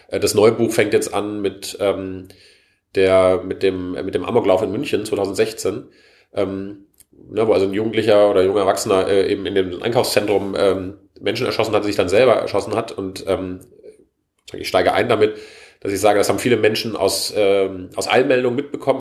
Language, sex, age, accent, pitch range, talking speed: German, male, 30-49, German, 95-125 Hz, 185 wpm